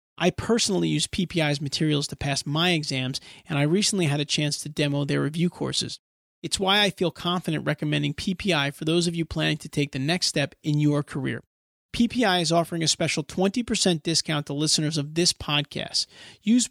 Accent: American